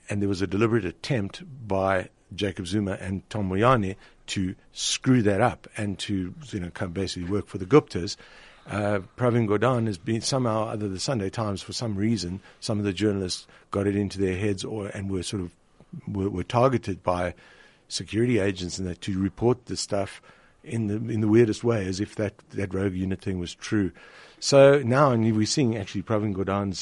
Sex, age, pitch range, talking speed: male, 60-79, 95-115 Hz, 195 wpm